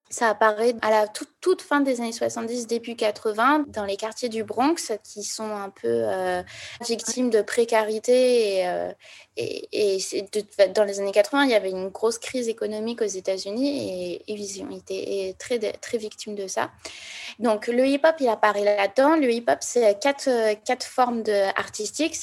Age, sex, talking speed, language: 20-39, female, 185 wpm, French